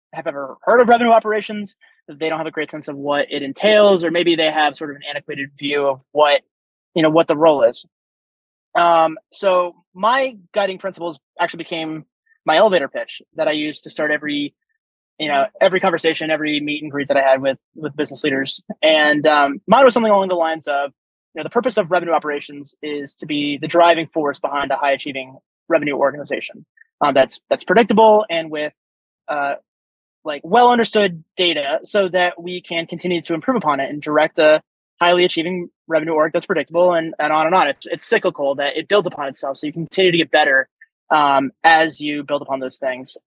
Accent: American